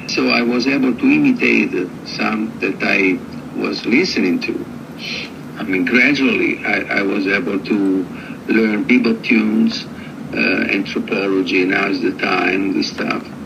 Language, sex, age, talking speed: English, male, 50-69, 140 wpm